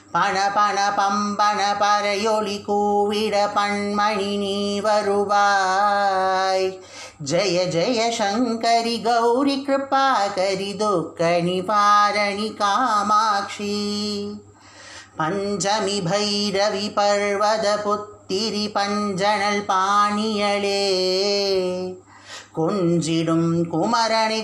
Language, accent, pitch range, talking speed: English, Indian, 195-210 Hz, 50 wpm